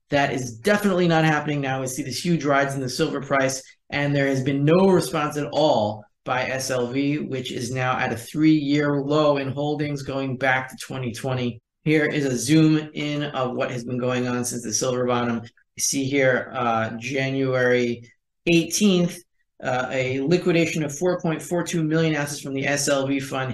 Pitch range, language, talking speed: 130-155 Hz, English, 180 wpm